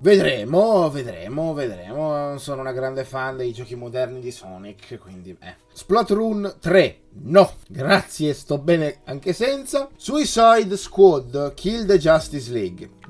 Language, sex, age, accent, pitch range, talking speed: Italian, male, 30-49, native, 120-160 Hz, 135 wpm